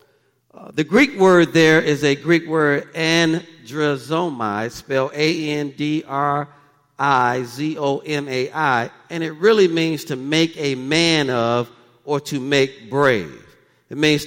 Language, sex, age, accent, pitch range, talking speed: English, male, 50-69, American, 135-170 Hz, 115 wpm